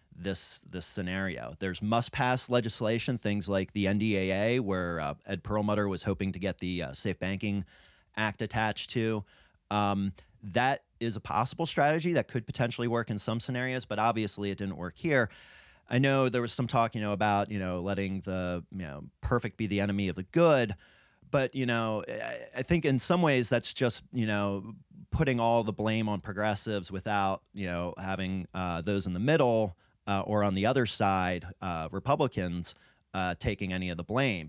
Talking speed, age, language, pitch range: 190 wpm, 30-49, English, 95-120 Hz